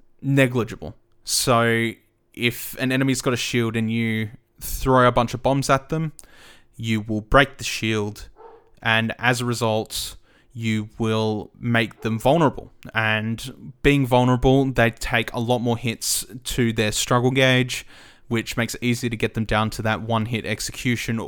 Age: 20-39